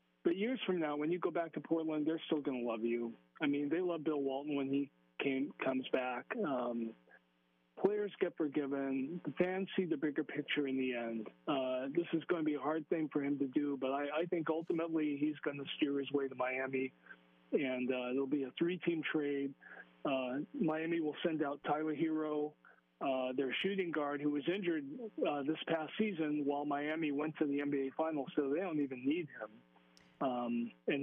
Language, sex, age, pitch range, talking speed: English, male, 40-59, 135-155 Hz, 205 wpm